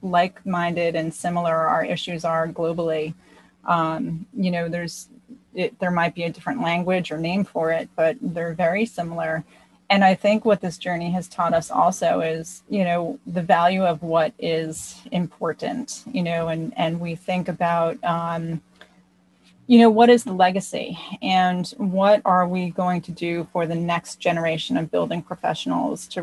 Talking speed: 165 wpm